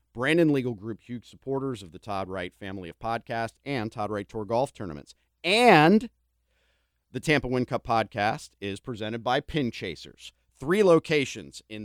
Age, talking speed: 40-59, 160 wpm